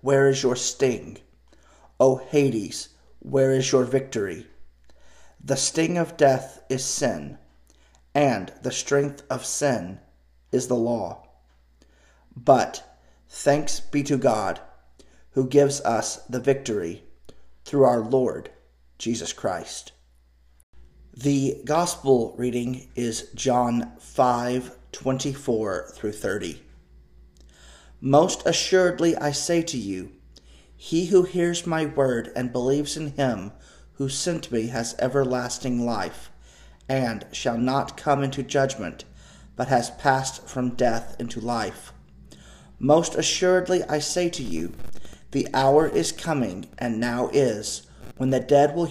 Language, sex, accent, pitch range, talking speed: English, male, American, 100-145 Hz, 125 wpm